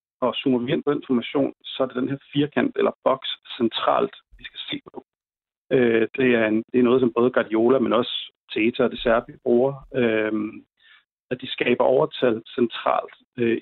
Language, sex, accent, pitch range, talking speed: Danish, male, native, 120-140 Hz, 190 wpm